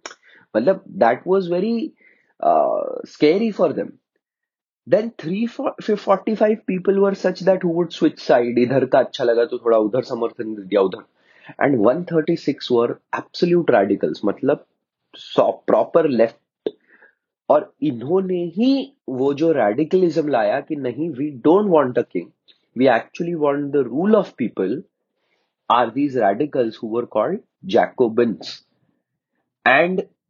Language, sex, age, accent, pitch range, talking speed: English, male, 30-49, Indian, 120-195 Hz, 100 wpm